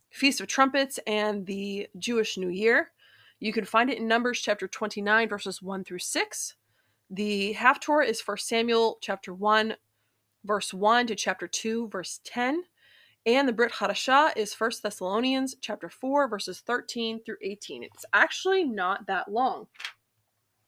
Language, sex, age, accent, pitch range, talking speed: English, female, 20-39, American, 190-245 Hz, 150 wpm